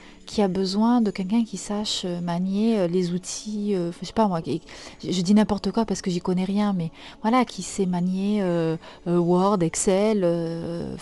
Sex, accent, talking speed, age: female, French, 185 wpm, 30-49